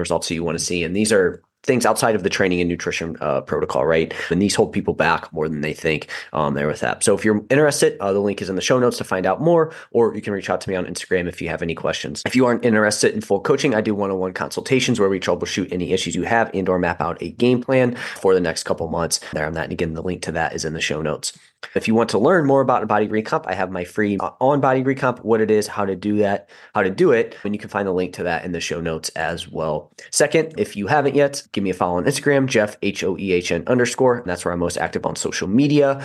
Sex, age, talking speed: male, 30-49, 285 wpm